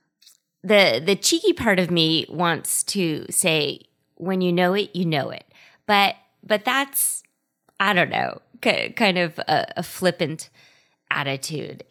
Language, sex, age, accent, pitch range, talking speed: English, female, 20-39, American, 160-195 Hz, 145 wpm